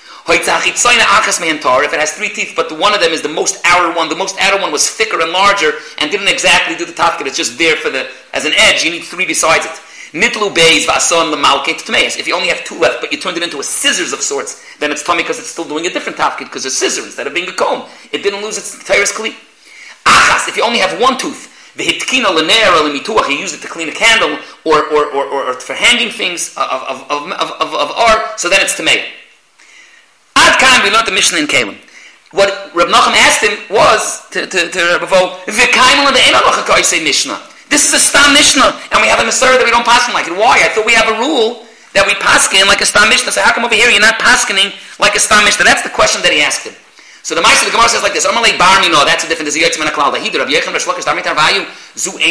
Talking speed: 220 wpm